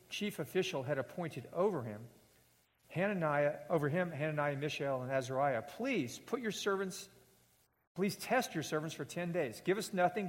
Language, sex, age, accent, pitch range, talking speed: English, male, 50-69, American, 140-185 Hz, 155 wpm